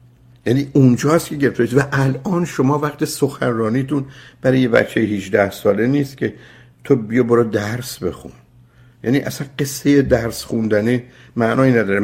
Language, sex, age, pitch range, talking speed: Persian, male, 60-79, 100-135 Hz, 145 wpm